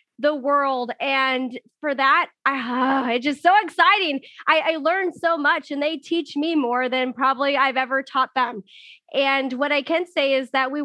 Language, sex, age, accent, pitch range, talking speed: English, female, 20-39, American, 250-290 Hz, 190 wpm